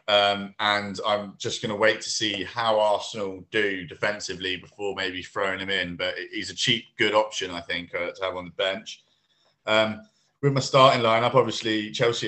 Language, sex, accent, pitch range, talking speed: English, male, British, 100-120 Hz, 195 wpm